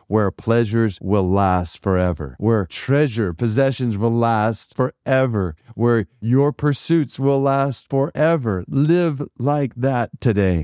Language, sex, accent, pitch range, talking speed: English, male, American, 95-125 Hz, 120 wpm